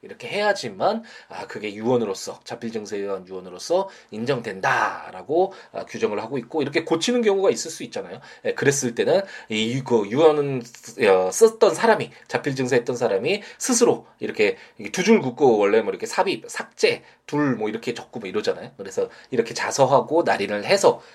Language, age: Korean, 20-39